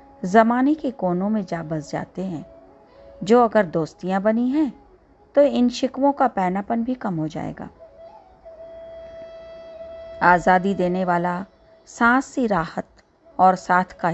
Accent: native